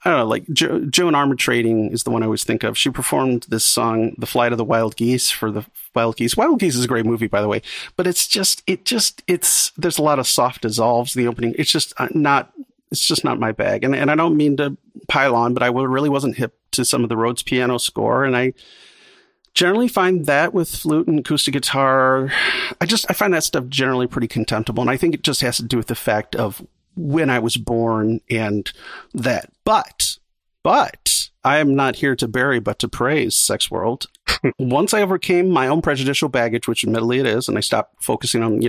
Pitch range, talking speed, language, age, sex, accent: 115-160 Hz, 225 wpm, English, 40-59, male, American